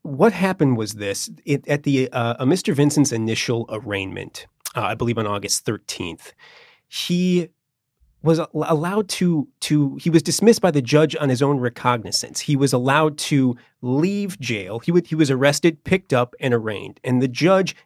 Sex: male